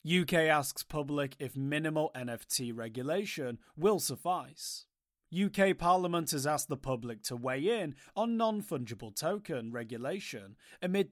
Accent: British